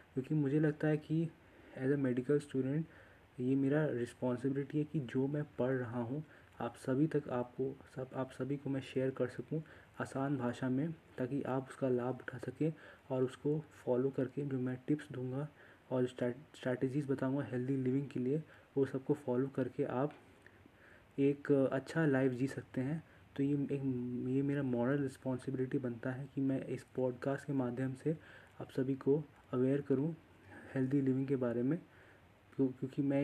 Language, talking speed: Hindi, 170 wpm